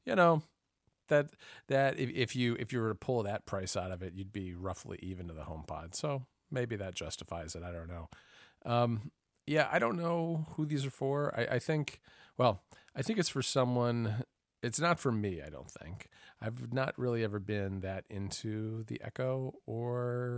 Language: English